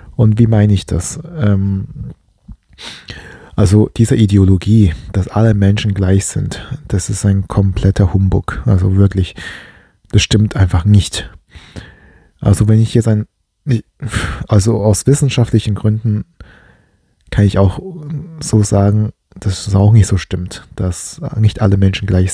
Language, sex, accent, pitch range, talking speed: German, male, German, 95-110 Hz, 130 wpm